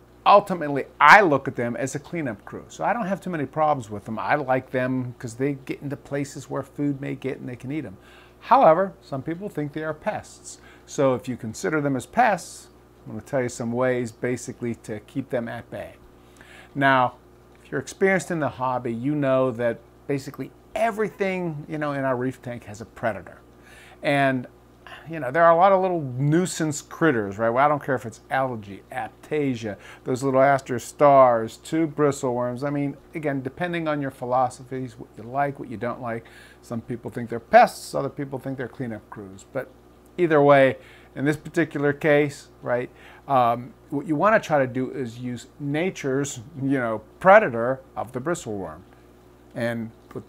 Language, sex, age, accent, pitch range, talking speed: English, male, 50-69, American, 115-150 Hz, 195 wpm